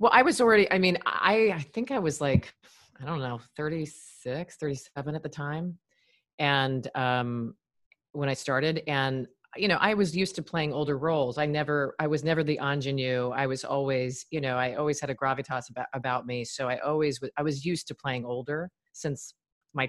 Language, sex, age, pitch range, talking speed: English, female, 30-49, 130-175 Hz, 200 wpm